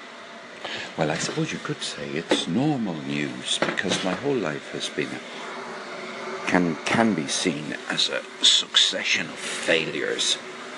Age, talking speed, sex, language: 60-79, 135 wpm, male, English